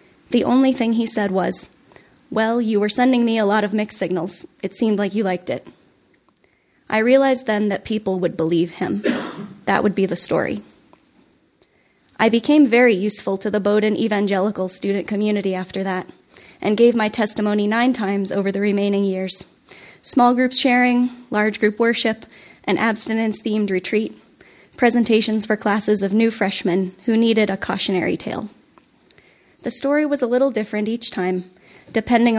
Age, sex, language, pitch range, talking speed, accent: 10-29, female, English, 195-235 Hz, 160 wpm, American